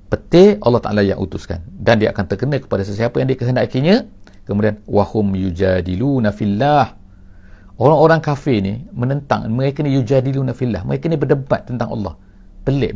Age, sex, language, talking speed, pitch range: 50-69, male, English, 155 wpm, 90-110 Hz